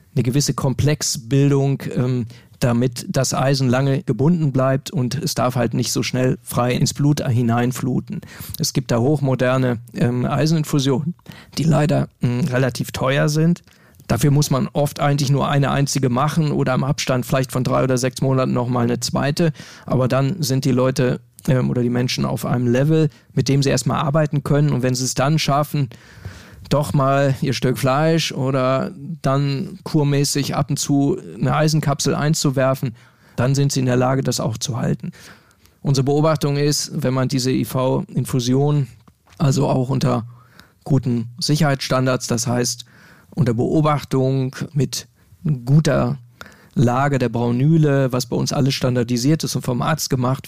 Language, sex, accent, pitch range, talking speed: German, male, German, 125-145 Hz, 155 wpm